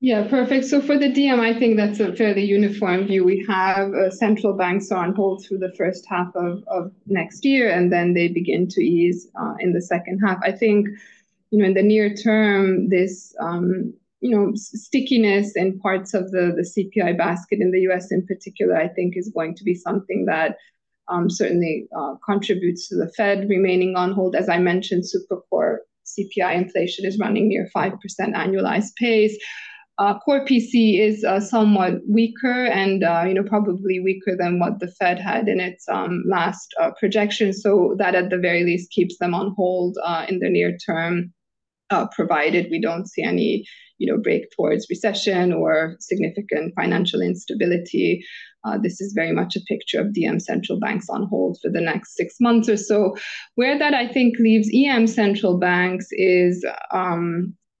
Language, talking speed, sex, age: English, 190 wpm, female, 20-39